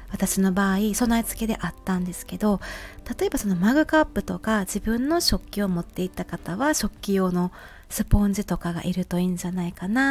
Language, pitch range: Japanese, 180-225 Hz